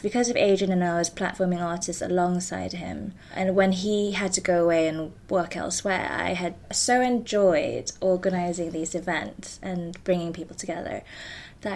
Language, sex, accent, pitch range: English, female, British, 175-205 Hz